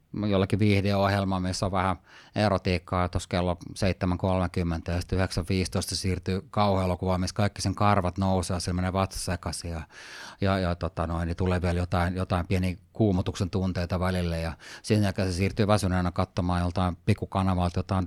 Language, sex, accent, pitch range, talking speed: Finnish, male, native, 90-105 Hz, 155 wpm